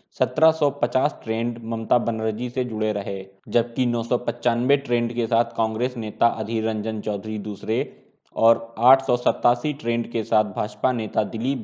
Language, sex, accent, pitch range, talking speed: Hindi, male, native, 115-135 Hz, 135 wpm